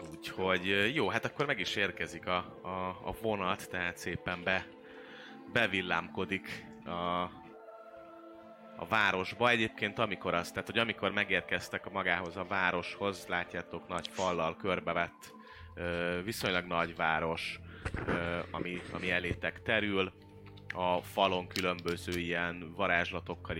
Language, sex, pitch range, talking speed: Hungarian, male, 85-100 Hz, 110 wpm